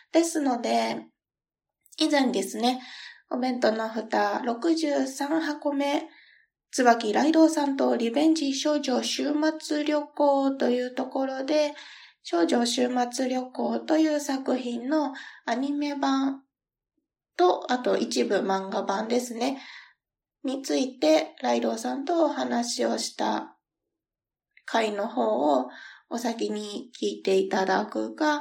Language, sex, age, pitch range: Japanese, female, 20-39, 240-300 Hz